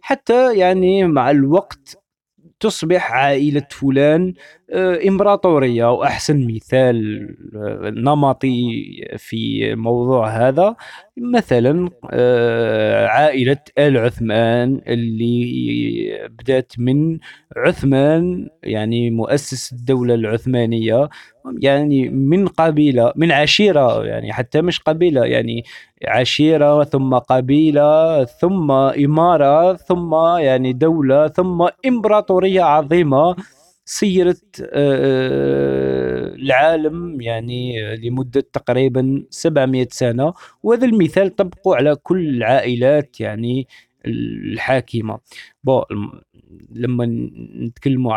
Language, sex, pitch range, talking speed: Arabic, male, 120-170 Hz, 80 wpm